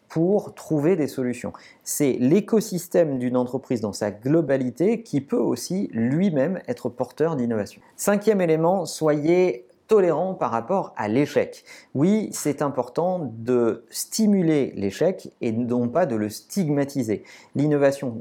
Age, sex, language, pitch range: 40-59, male, French, 120-170 Hz